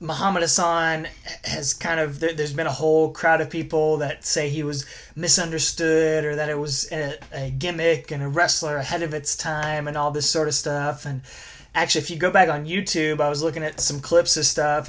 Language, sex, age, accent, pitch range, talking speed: English, male, 20-39, American, 150-175 Hz, 215 wpm